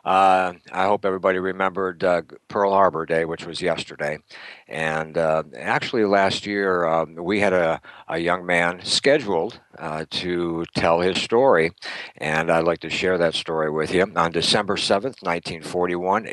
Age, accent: 60-79, American